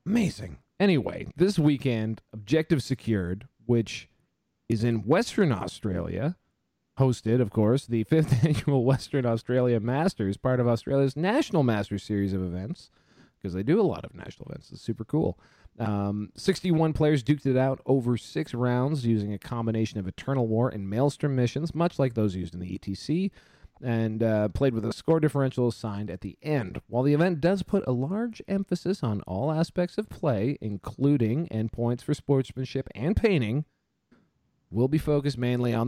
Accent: American